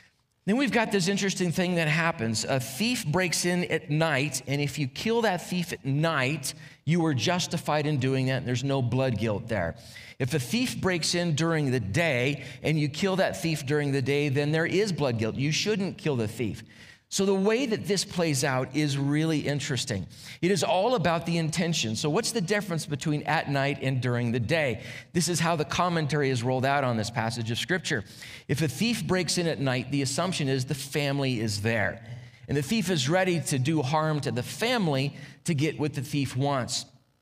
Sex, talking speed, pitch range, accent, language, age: male, 210 wpm, 125-170 Hz, American, English, 40-59